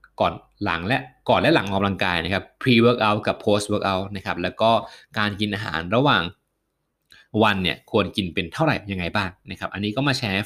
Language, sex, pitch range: Thai, male, 95-125 Hz